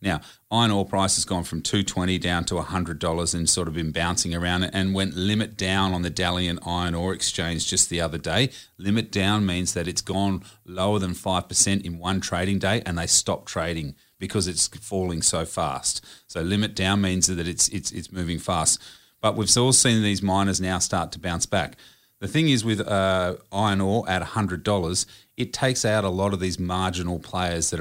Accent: Australian